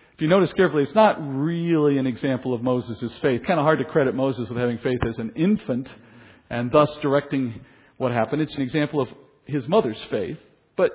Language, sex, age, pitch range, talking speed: English, male, 50-69, 130-175 Hz, 205 wpm